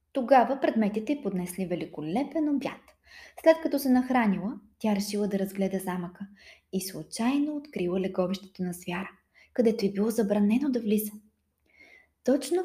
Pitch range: 195-265 Hz